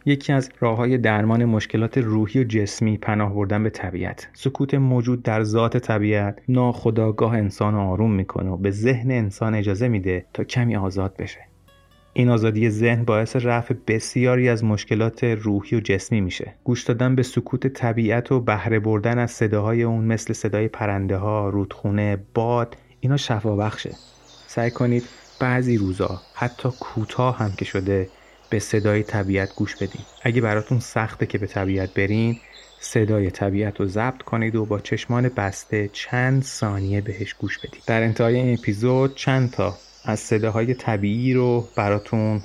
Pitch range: 105-120 Hz